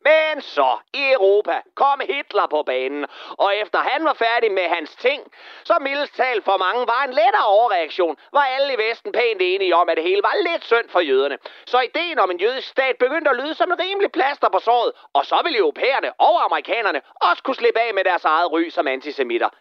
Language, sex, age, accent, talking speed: Danish, male, 30-49, native, 215 wpm